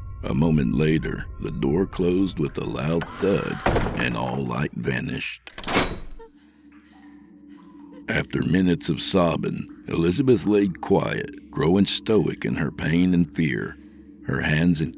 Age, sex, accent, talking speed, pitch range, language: 60-79, male, American, 125 wpm, 80-105 Hz, English